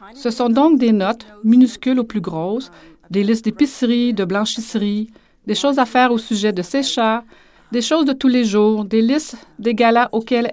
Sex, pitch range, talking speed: female, 200-260 Hz, 195 wpm